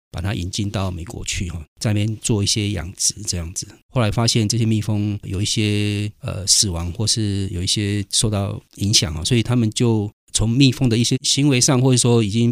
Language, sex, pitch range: Chinese, male, 95-115 Hz